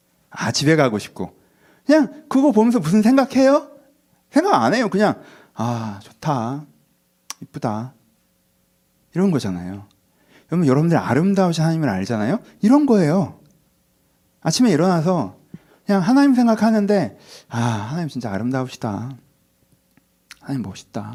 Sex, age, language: male, 30-49, Korean